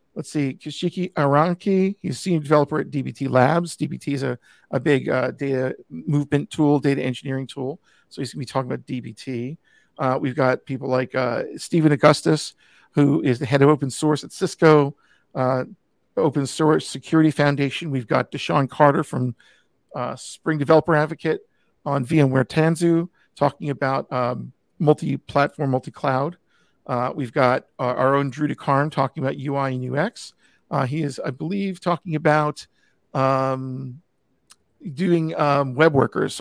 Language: English